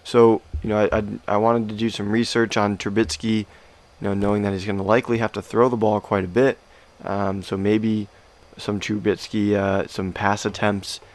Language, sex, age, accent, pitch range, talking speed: English, male, 20-39, American, 95-110 Hz, 205 wpm